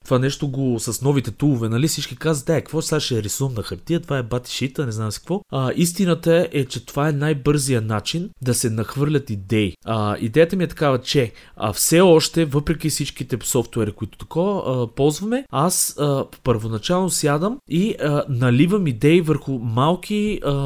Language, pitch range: Bulgarian, 115-160 Hz